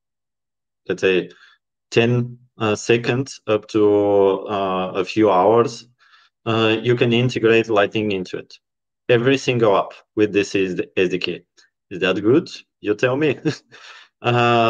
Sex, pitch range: male, 110-130 Hz